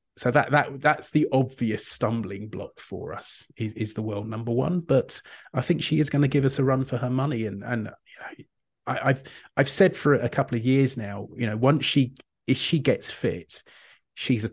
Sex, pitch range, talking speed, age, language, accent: male, 110-135 Hz, 225 wpm, 30-49, English, British